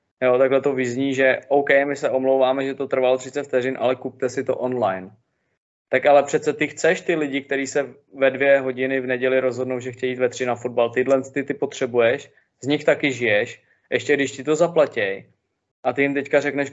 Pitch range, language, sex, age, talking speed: 125-145 Hz, Czech, male, 20-39, 210 wpm